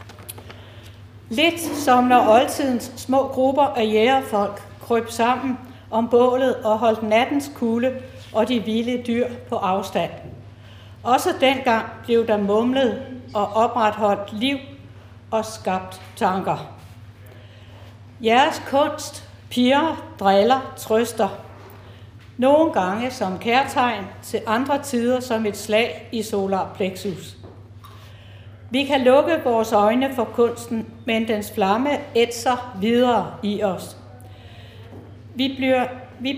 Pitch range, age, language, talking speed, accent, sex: 165-250 Hz, 60-79, Danish, 110 wpm, native, female